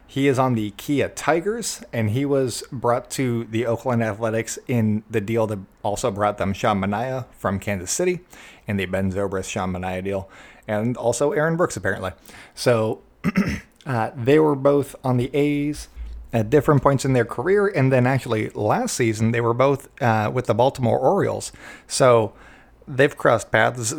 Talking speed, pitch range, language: 175 wpm, 105-140 Hz, English